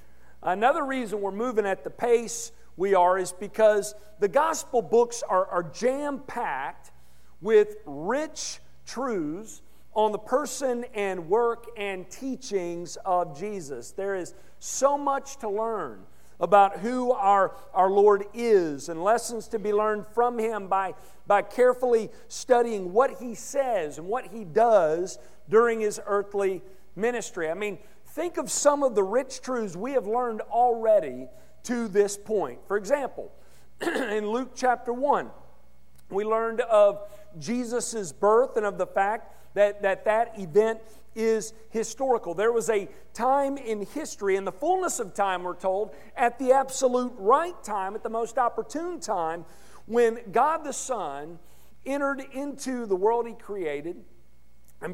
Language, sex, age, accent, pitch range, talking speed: English, male, 50-69, American, 190-245 Hz, 145 wpm